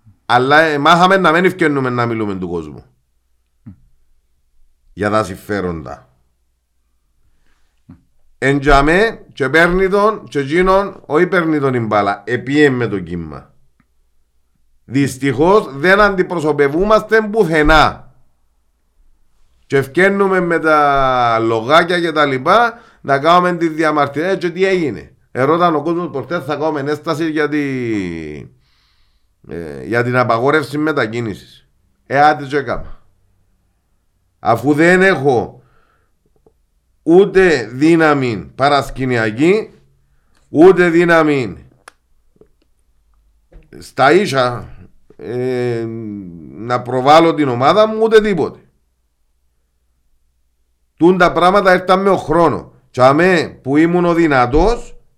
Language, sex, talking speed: Greek, male, 100 wpm